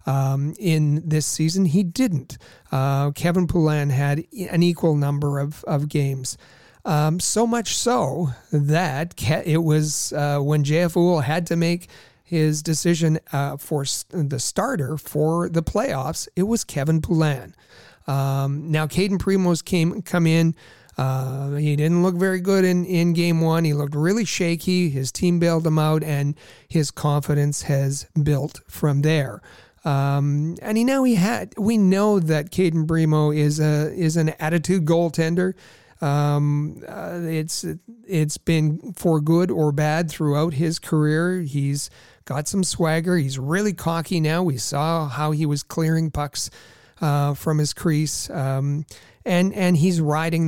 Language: English